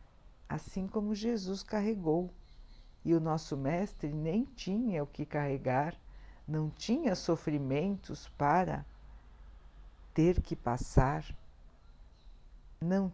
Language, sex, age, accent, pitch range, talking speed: Portuguese, female, 60-79, Brazilian, 130-190 Hz, 95 wpm